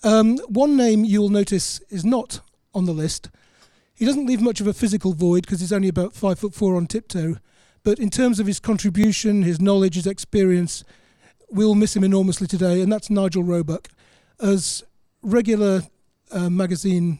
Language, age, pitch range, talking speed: English, 40-59, 175-205 Hz, 175 wpm